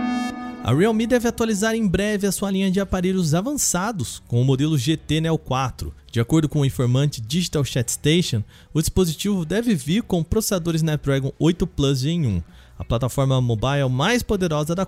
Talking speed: 175 wpm